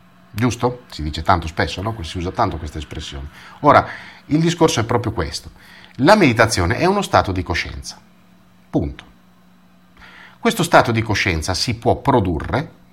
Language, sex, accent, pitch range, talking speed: Italian, male, native, 80-115 Hz, 150 wpm